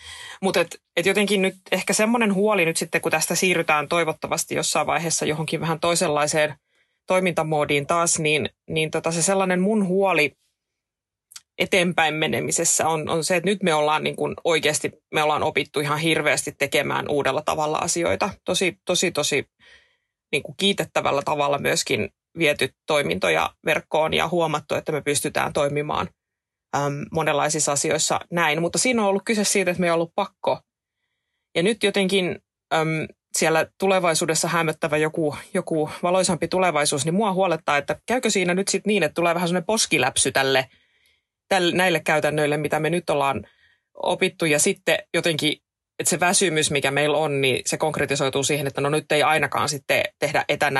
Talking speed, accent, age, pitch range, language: 160 wpm, native, 20-39, 150-185 Hz, Finnish